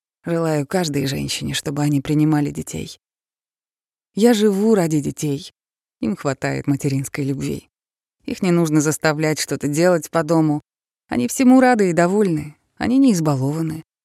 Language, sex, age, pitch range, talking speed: Russian, female, 20-39, 145-180 Hz, 130 wpm